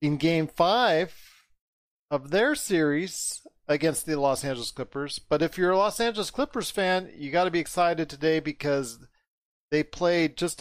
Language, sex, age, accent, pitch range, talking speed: English, male, 40-59, American, 135-160 Hz, 165 wpm